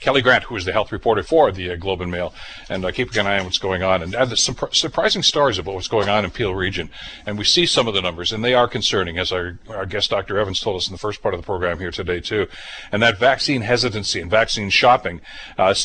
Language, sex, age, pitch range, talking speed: English, male, 60-79, 100-125 Hz, 275 wpm